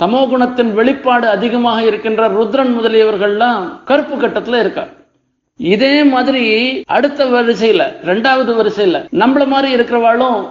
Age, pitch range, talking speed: 50-69, 205-245 Hz, 110 wpm